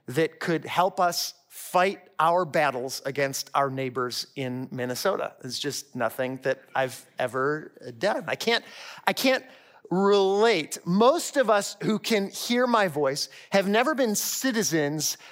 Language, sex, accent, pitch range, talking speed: English, male, American, 150-230 Hz, 140 wpm